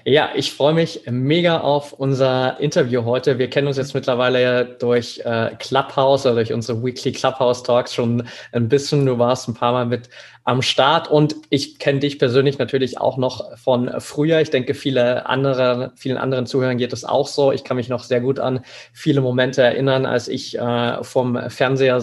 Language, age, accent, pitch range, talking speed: German, 20-39, German, 120-135 Hz, 190 wpm